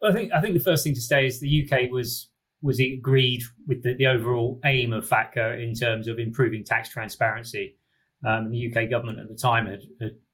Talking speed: 215 wpm